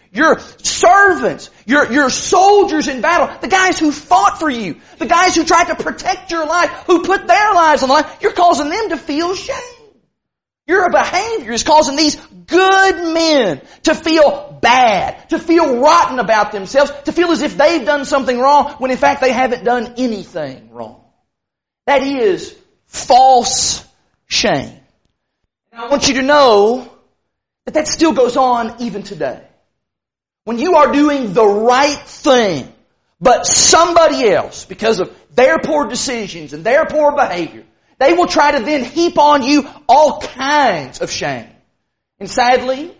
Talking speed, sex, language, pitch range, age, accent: 160 wpm, male, English, 235-320 Hz, 40-59, American